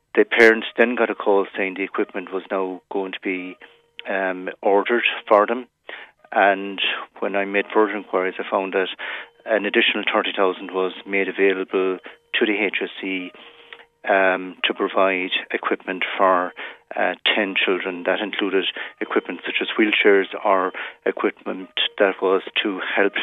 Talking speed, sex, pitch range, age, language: 145 wpm, male, 95-105 Hz, 40-59, English